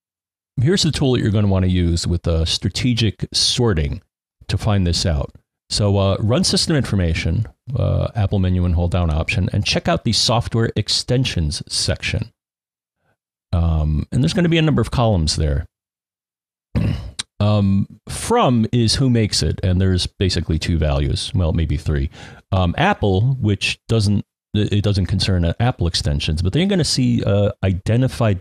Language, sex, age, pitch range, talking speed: English, male, 40-59, 85-115 Hz, 175 wpm